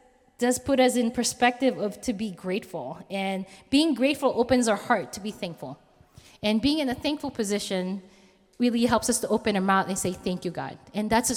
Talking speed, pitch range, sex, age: 205 wpm, 180-245 Hz, female, 20-39